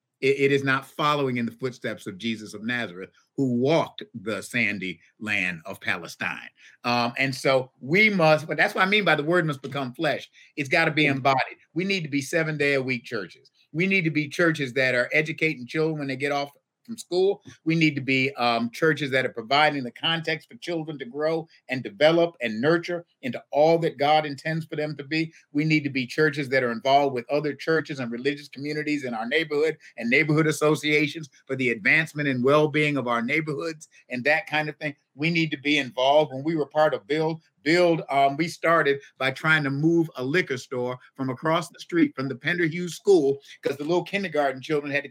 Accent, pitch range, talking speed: American, 135-170 Hz, 215 wpm